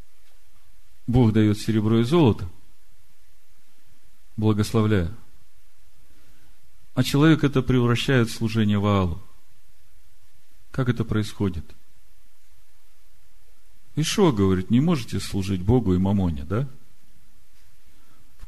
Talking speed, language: 90 wpm, Russian